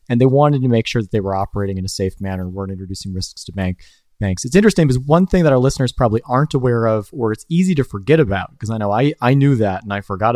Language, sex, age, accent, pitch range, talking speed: English, male, 30-49, American, 95-125 Hz, 285 wpm